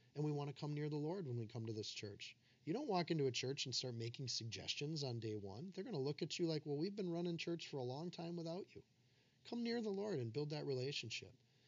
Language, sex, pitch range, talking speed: English, male, 125-165 Hz, 270 wpm